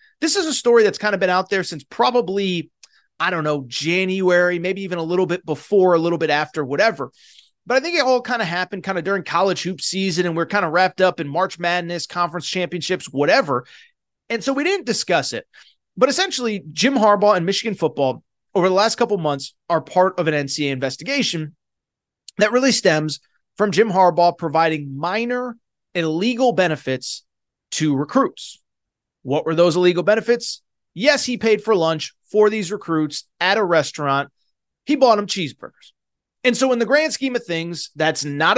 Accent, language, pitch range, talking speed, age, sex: American, English, 165-230 Hz, 185 wpm, 30-49, male